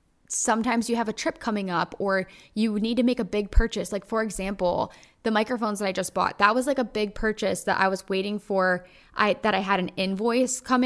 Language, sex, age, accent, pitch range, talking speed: English, female, 10-29, American, 190-230 Hz, 230 wpm